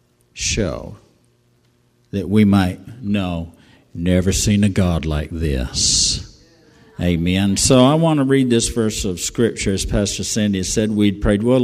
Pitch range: 95-125 Hz